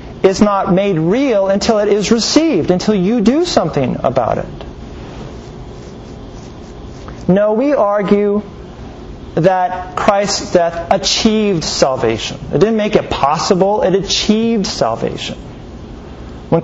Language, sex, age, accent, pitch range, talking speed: English, male, 40-59, American, 175-220 Hz, 110 wpm